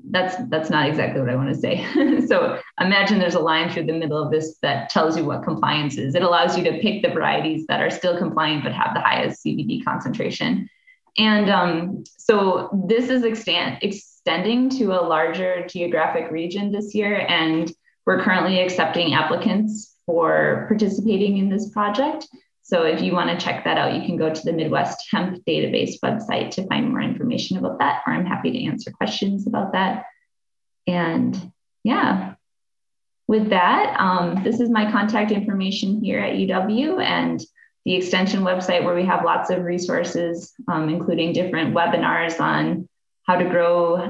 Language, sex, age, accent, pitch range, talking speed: English, female, 20-39, American, 170-215 Hz, 175 wpm